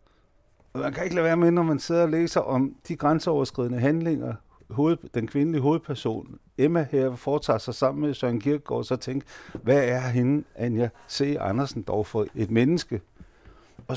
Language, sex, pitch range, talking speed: Danish, male, 120-150 Hz, 175 wpm